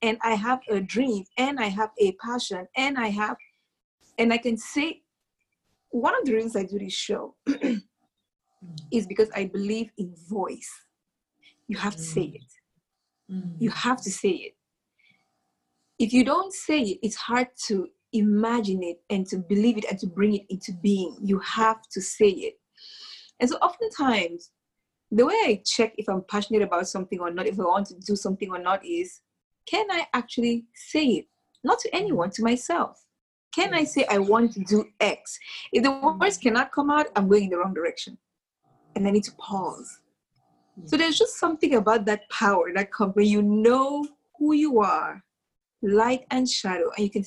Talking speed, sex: 185 wpm, female